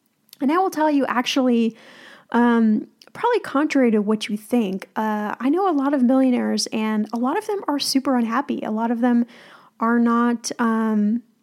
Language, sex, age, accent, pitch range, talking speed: English, female, 10-29, American, 220-280 Hz, 185 wpm